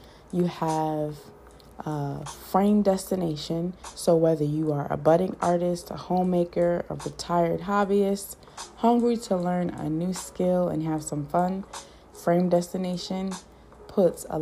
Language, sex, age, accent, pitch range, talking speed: English, female, 20-39, American, 155-185 Hz, 130 wpm